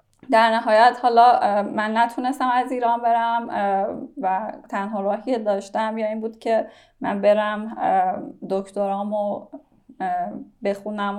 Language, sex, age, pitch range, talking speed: Persian, female, 10-29, 205-235 Hz, 115 wpm